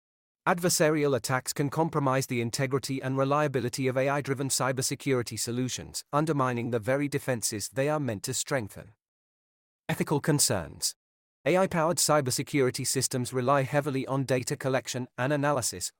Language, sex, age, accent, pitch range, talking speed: English, male, 40-59, British, 120-145 Hz, 125 wpm